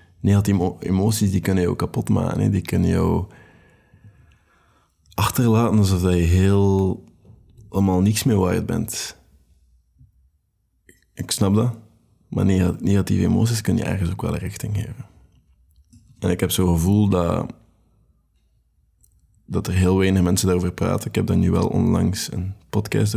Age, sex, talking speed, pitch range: 20-39, male, 130 wpm, 90-110 Hz